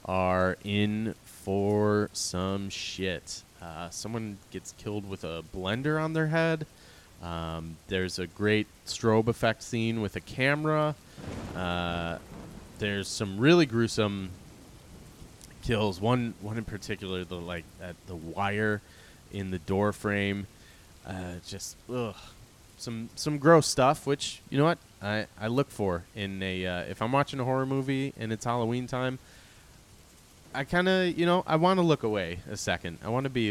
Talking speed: 160 wpm